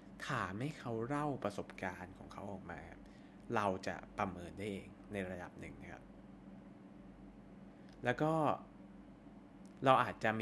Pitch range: 95-115 Hz